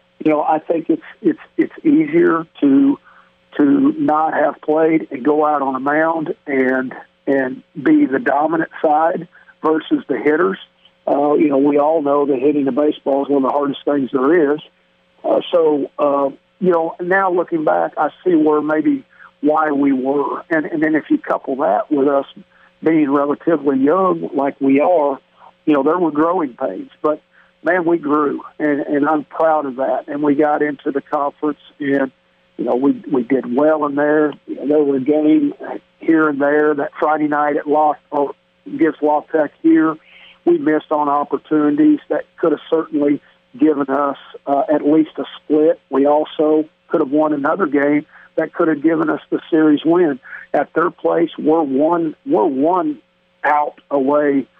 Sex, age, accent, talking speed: male, 50-69, American, 180 wpm